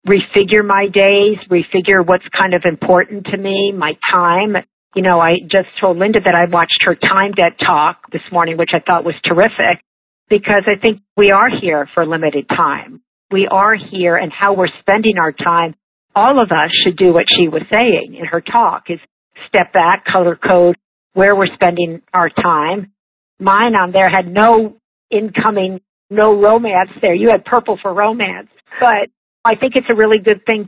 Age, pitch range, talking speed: 50-69, 170-200 Hz, 185 wpm